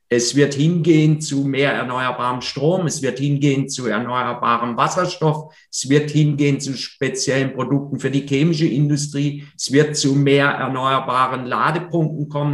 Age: 50-69